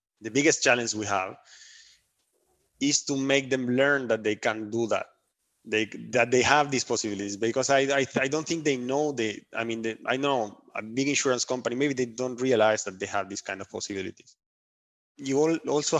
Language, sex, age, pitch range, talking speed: English, male, 20-39, 115-140 Hz, 200 wpm